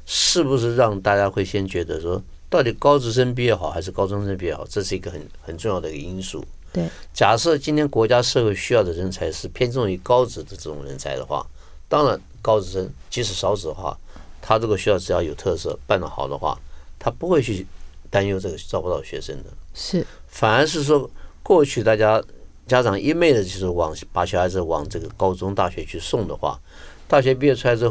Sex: male